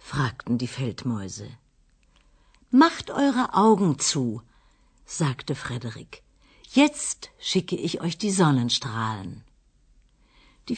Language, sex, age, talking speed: Arabic, female, 60-79, 90 wpm